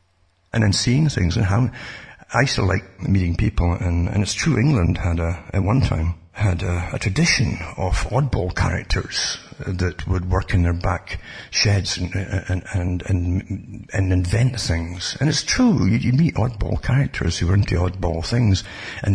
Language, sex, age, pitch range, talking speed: English, male, 60-79, 90-115 Hz, 175 wpm